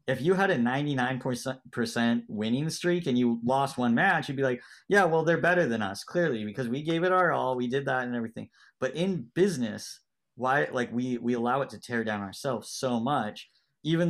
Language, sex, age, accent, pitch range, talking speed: English, male, 30-49, American, 115-145 Hz, 215 wpm